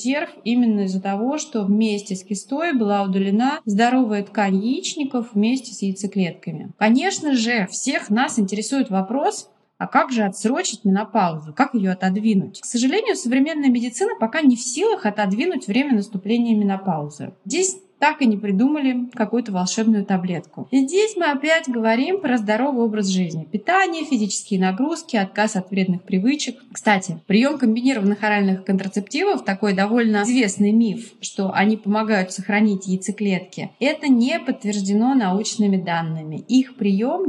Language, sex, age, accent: Russian, female, 20-39, native